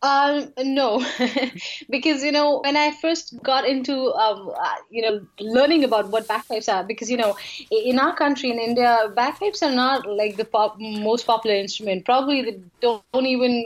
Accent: Indian